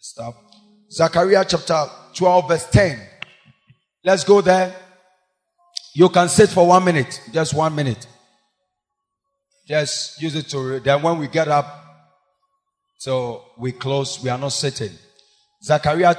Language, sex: English, male